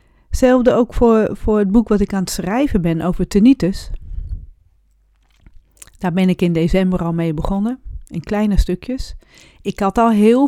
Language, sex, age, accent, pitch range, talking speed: Dutch, female, 40-59, Dutch, 175-215 Hz, 165 wpm